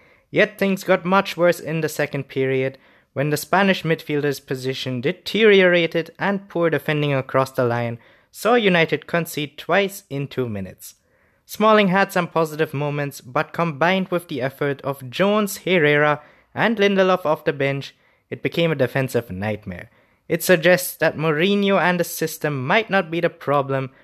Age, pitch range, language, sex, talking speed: 20-39, 130-175 Hz, English, male, 155 wpm